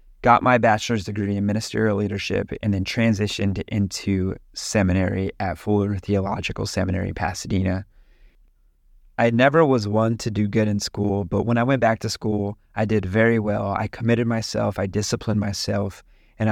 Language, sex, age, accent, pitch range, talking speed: English, male, 30-49, American, 100-120 Hz, 160 wpm